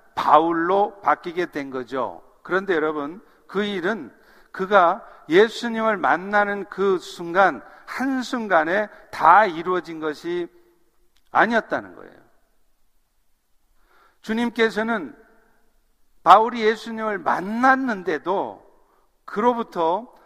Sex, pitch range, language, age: male, 150-220 Hz, Korean, 50-69